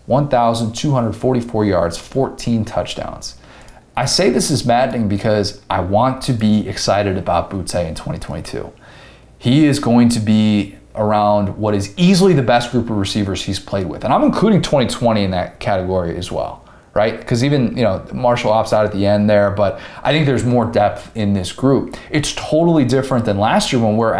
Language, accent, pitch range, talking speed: English, American, 105-130 Hz, 185 wpm